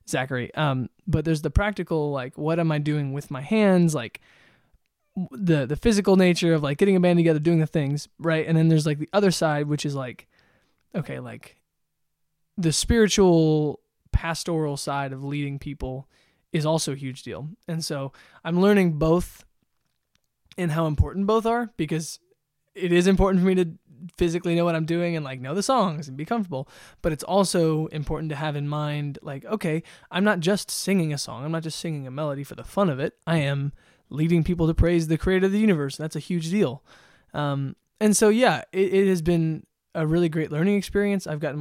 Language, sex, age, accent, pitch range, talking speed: English, male, 20-39, American, 145-175 Hz, 200 wpm